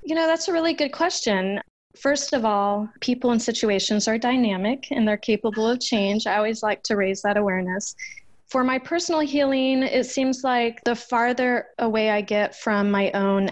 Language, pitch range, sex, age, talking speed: English, 195-235 Hz, female, 20-39, 185 wpm